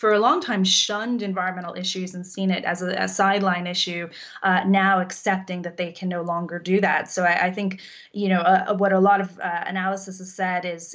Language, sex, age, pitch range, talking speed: English, female, 20-39, 175-195 Hz, 225 wpm